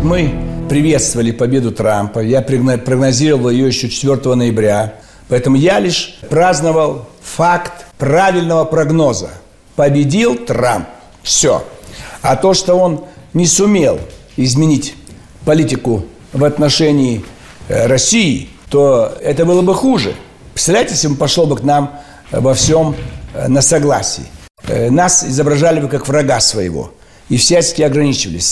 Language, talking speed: Russian, 115 wpm